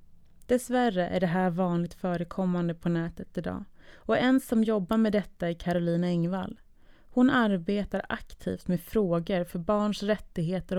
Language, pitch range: Swedish, 180-210 Hz